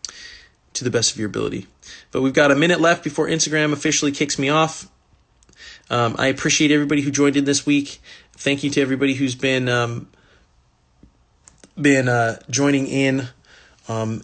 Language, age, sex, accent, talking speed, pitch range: English, 30-49, male, American, 165 wpm, 115-145 Hz